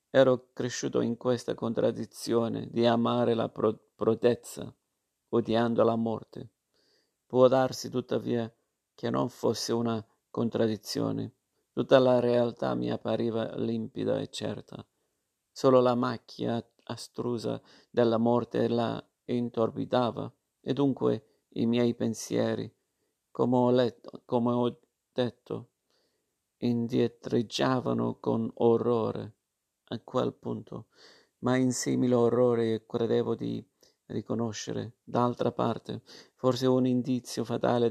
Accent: native